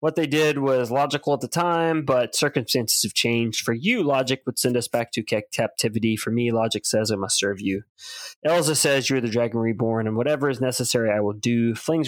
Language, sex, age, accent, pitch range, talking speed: English, male, 20-39, American, 115-145 Hz, 215 wpm